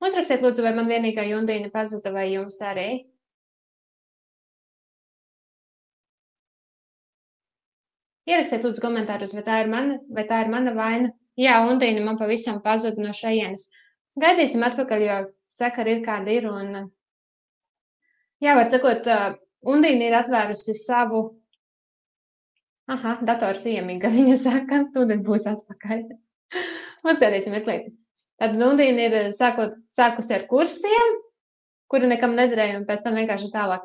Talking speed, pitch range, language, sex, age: 120 wpm, 195-240 Hz, English, female, 20-39